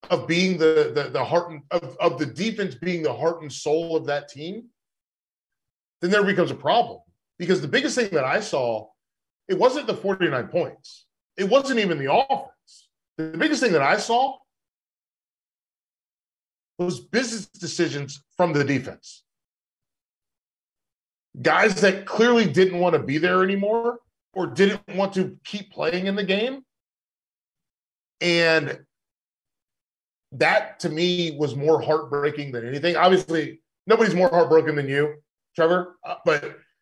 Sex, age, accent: male, 40-59, American